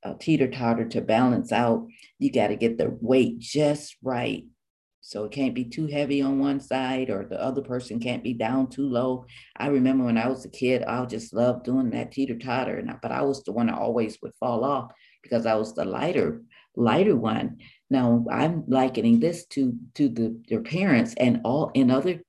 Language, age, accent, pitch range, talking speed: English, 50-69, American, 120-140 Hz, 200 wpm